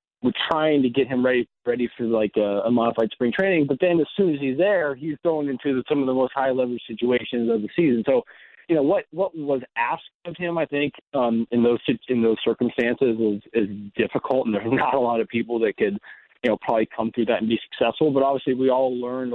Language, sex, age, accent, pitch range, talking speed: English, male, 30-49, American, 115-135 Hz, 240 wpm